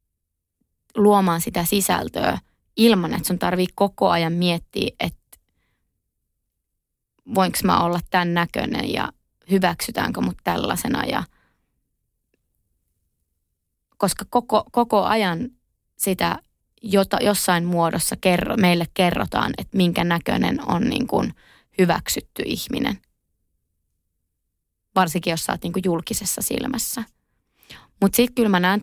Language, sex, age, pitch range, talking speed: Finnish, female, 20-39, 170-205 Hz, 105 wpm